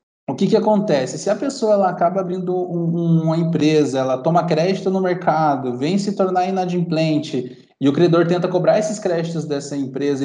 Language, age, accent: Portuguese, 20-39, Brazilian